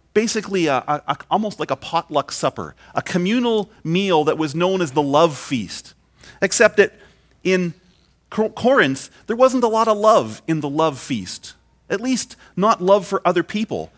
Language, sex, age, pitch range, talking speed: English, male, 40-59, 150-205 Hz, 175 wpm